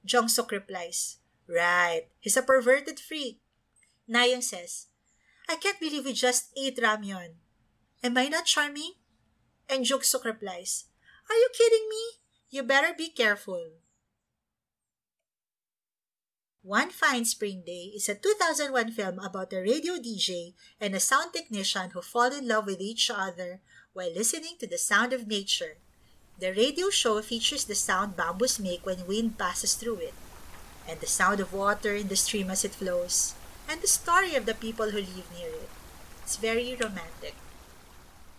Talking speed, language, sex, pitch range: 155 wpm, English, female, 185-265 Hz